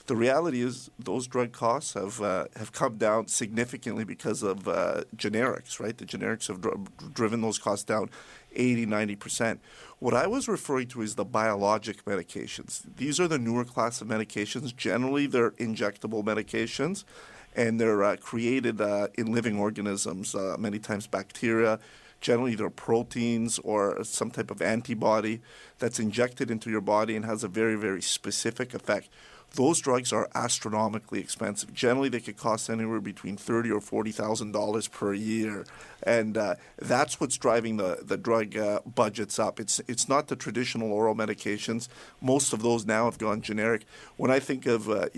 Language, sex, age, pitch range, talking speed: English, male, 50-69, 110-120 Hz, 170 wpm